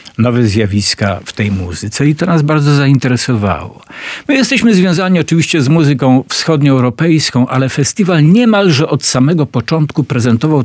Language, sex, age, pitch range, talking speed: Polish, male, 50-69, 110-140 Hz, 135 wpm